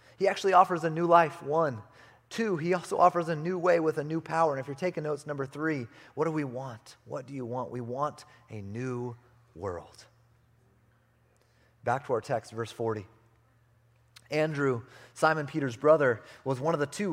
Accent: American